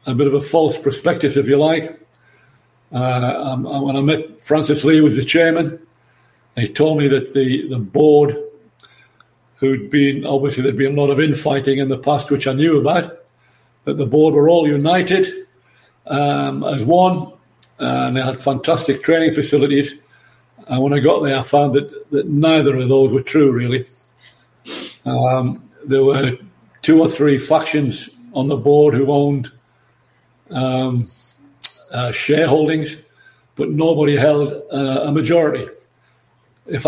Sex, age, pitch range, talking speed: male, 60-79, 135-155 Hz, 155 wpm